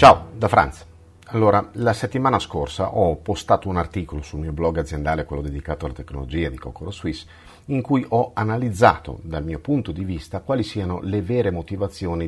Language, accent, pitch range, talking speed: Italian, native, 80-115 Hz, 175 wpm